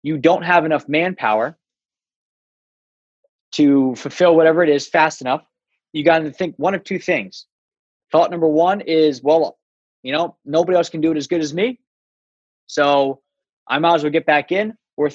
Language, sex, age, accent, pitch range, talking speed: English, male, 20-39, American, 145-180 Hz, 180 wpm